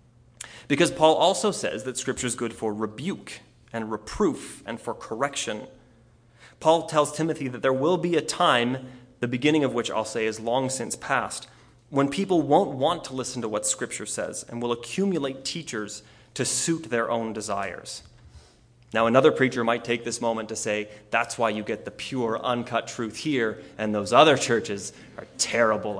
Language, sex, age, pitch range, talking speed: English, male, 30-49, 110-135 Hz, 180 wpm